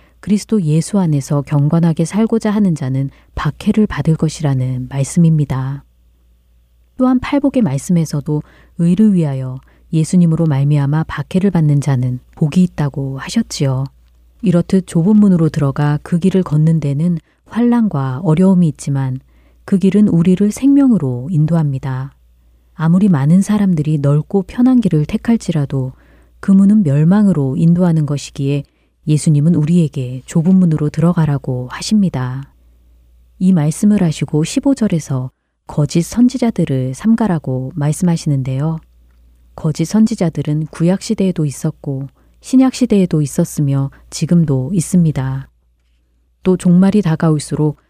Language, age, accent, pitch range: Korean, 30-49, native, 135-185 Hz